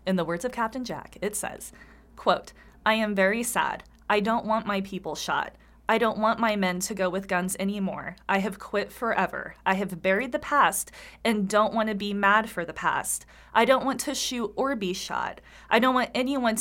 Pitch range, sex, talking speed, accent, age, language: 190-230 Hz, female, 215 wpm, American, 20-39, English